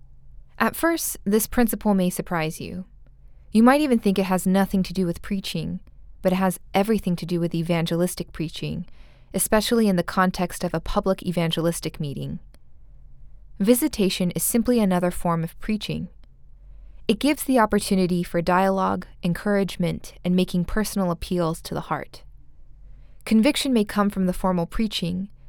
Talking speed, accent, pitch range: 150 wpm, American, 165-205 Hz